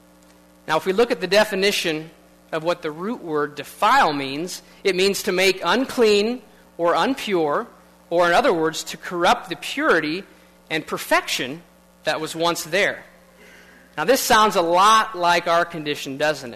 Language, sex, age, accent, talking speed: English, male, 40-59, American, 160 wpm